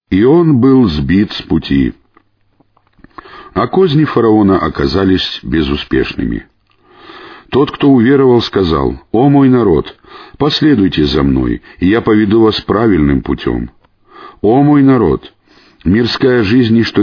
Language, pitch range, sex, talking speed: Russian, 85-115 Hz, male, 115 wpm